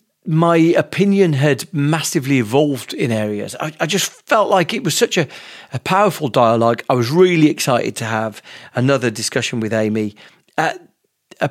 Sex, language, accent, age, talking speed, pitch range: male, English, British, 40-59, 160 wpm, 115-155 Hz